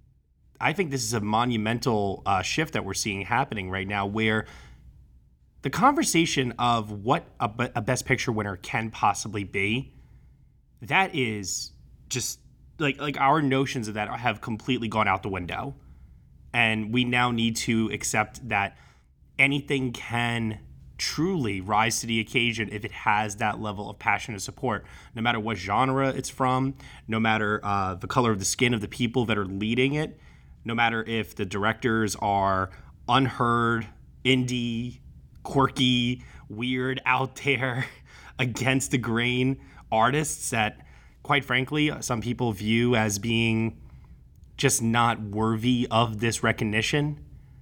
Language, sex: English, male